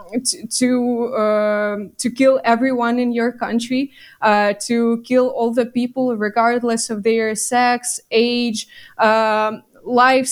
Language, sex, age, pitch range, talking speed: English, female, 20-39, 215-245 Hz, 130 wpm